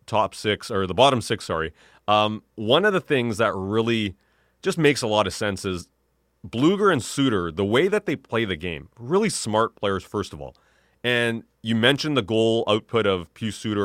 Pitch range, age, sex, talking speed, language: 95-125 Hz, 30-49, male, 200 wpm, English